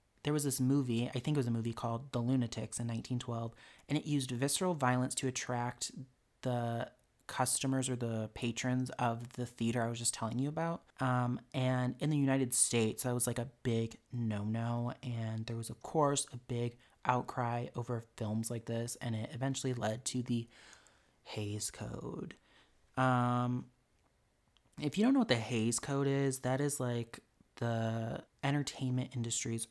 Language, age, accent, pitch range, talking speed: English, 30-49, American, 115-140 Hz, 170 wpm